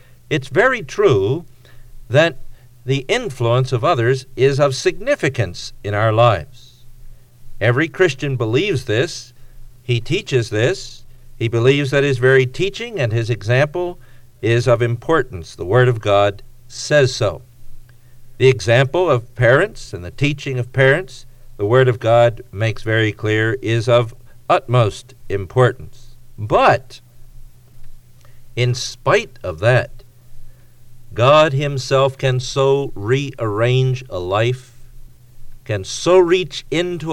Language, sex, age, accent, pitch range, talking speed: English, male, 50-69, American, 120-135 Hz, 120 wpm